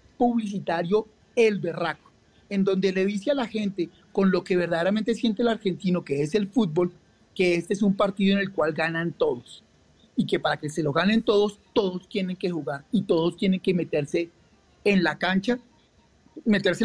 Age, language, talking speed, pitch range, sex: 40-59, English, 185 wpm, 170-205 Hz, male